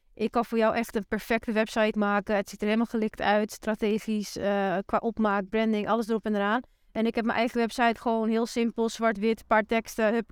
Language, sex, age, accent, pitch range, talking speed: Dutch, female, 30-49, Dutch, 215-250 Hz, 215 wpm